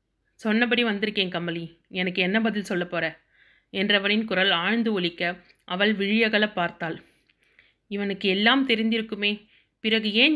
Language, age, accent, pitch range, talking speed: Tamil, 30-49, native, 195-235 Hz, 110 wpm